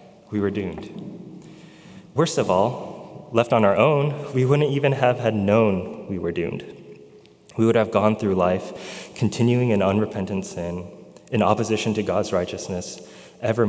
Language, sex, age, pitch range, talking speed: English, male, 20-39, 100-125 Hz, 155 wpm